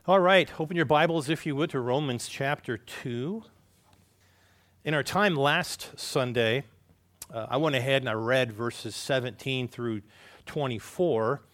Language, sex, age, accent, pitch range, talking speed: English, male, 40-59, American, 105-145 Hz, 145 wpm